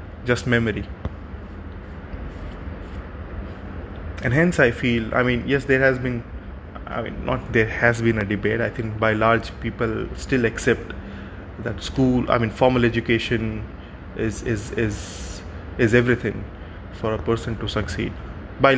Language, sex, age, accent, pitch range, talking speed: English, male, 20-39, Indian, 95-130 Hz, 140 wpm